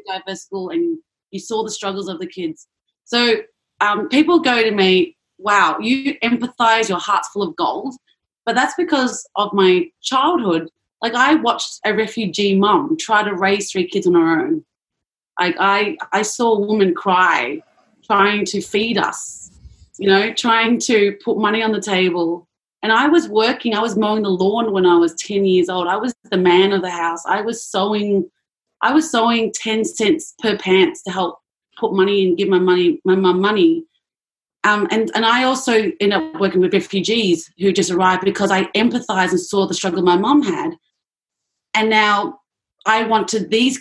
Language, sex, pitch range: English, female, 185-230 Hz